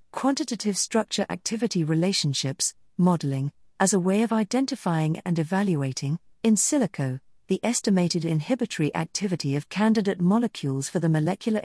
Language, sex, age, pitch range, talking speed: English, female, 50-69, 155-215 Hz, 120 wpm